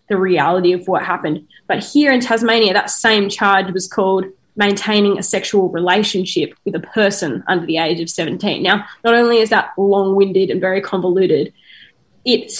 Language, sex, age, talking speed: English, female, 10-29, 175 wpm